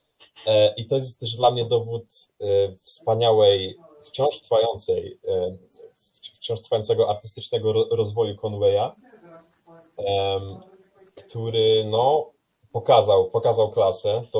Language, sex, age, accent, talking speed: Polish, male, 20-39, native, 90 wpm